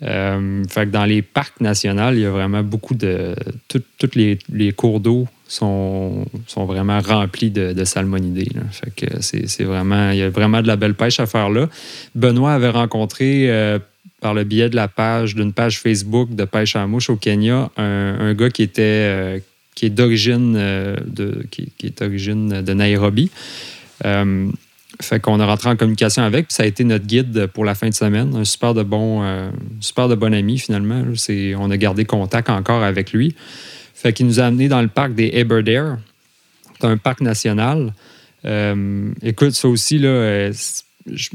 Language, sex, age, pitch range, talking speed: French, male, 30-49, 100-120 Hz, 195 wpm